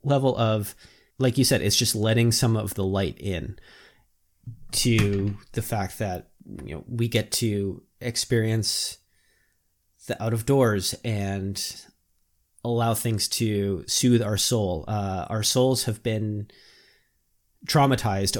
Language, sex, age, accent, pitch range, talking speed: English, male, 30-49, American, 100-115 Hz, 130 wpm